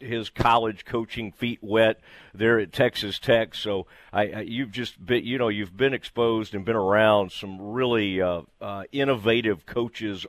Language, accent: English, American